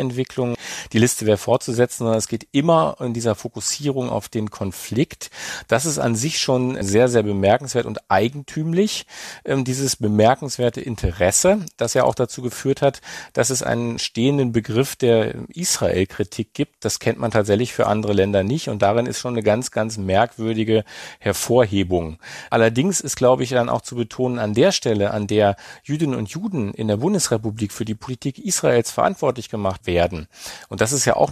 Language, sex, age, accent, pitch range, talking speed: German, male, 40-59, German, 110-135 Hz, 170 wpm